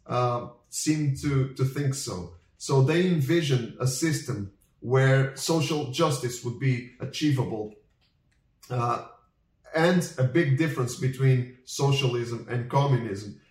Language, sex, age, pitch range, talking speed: Portuguese, male, 30-49, 125-150 Hz, 115 wpm